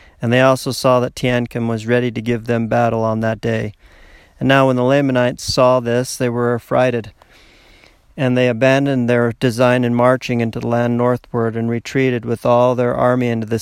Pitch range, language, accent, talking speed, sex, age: 115-130 Hz, English, American, 195 wpm, male, 40-59